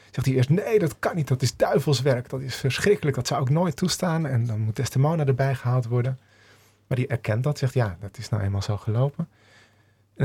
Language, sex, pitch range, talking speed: Dutch, male, 105-145 Hz, 220 wpm